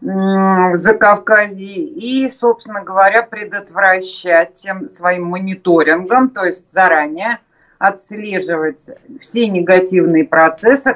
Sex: female